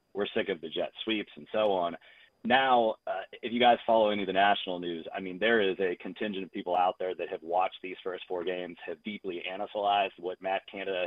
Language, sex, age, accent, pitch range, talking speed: English, male, 30-49, American, 95-115 Hz, 235 wpm